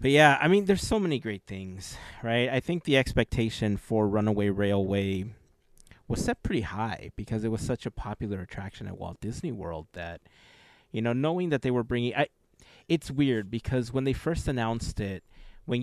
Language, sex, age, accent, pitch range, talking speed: English, male, 30-49, American, 105-135 Hz, 185 wpm